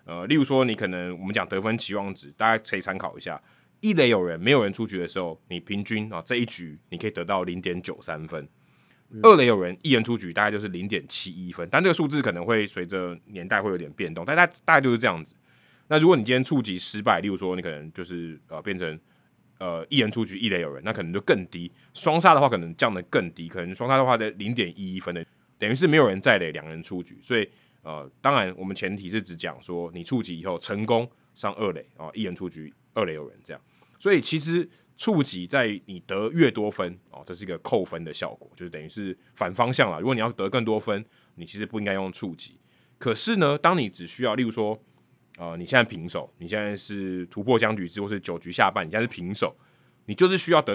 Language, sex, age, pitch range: Chinese, male, 20-39, 90-120 Hz